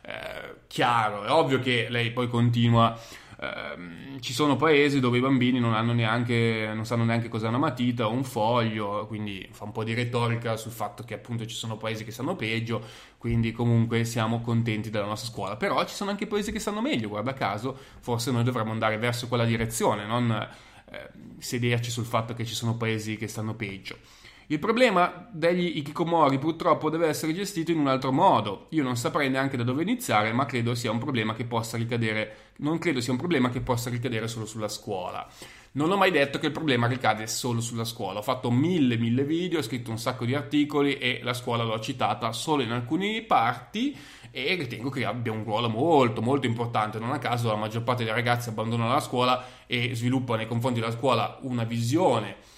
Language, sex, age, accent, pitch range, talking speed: Italian, male, 20-39, native, 115-135 Hz, 200 wpm